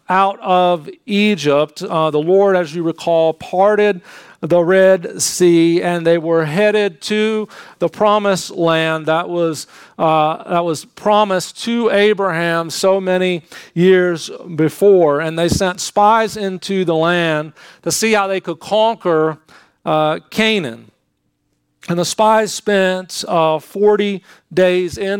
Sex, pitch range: male, 160-205 Hz